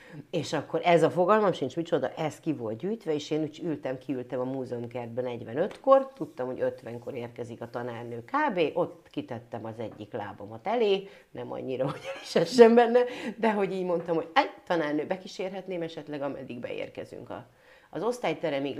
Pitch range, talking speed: 125-165 Hz, 155 wpm